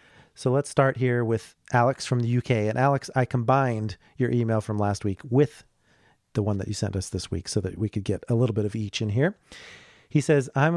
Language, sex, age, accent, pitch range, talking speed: English, male, 40-59, American, 110-135 Hz, 235 wpm